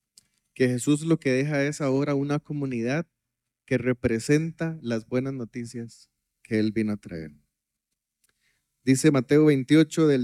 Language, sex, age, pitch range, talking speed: Spanish, male, 30-49, 110-145 Hz, 135 wpm